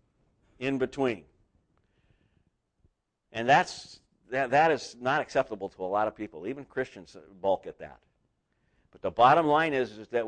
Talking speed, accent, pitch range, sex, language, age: 150 wpm, American, 95-120 Hz, male, English, 50-69